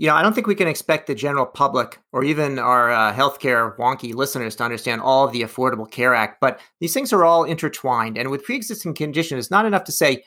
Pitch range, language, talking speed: 120-150 Hz, English, 240 wpm